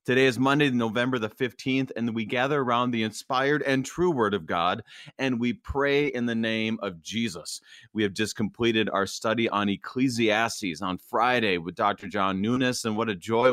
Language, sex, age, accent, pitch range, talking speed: English, male, 30-49, American, 110-135 Hz, 190 wpm